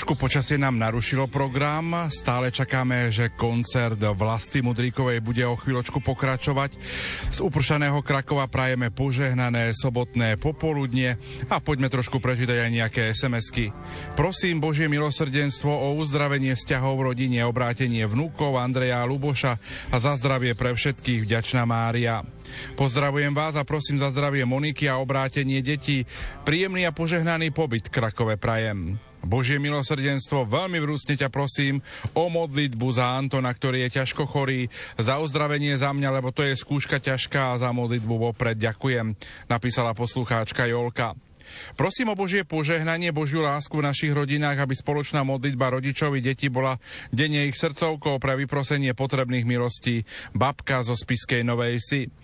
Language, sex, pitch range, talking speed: Slovak, male, 120-145 Hz, 140 wpm